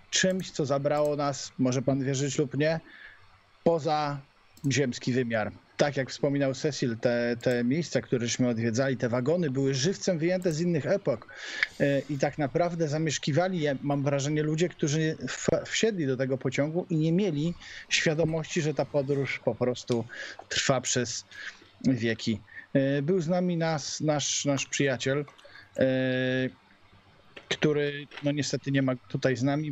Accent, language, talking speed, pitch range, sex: native, Polish, 135 wpm, 130-150 Hz, male